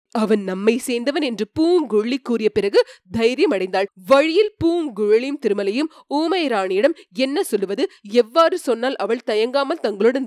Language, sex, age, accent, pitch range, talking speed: Tamil, female, 20-39, native, 215-360 Hz, 115 wpm